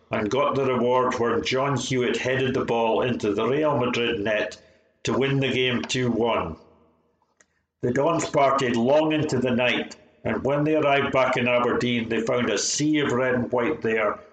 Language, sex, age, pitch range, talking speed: English, male, 60-79, 115-135 Hz, 180 wpm